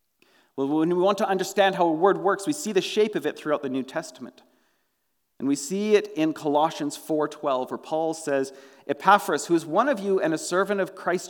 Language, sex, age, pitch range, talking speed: English, male, 40-59, 150-215 Hz, 220 wpm